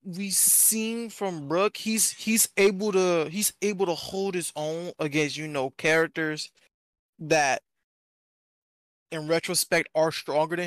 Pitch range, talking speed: 150-195 Hz, 135 wpm